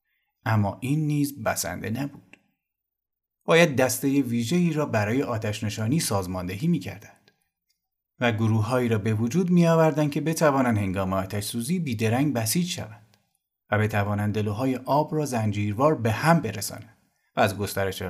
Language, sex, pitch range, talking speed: Persian, male, 105-155 Hz, 135 wpm